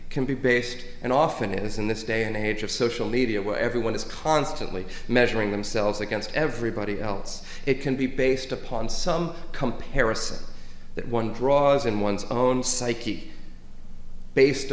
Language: English